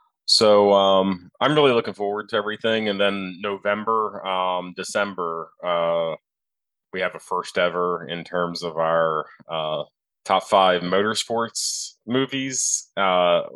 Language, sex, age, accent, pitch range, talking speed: English, male, 20-39, American, 85-100 Hz, 130 wpm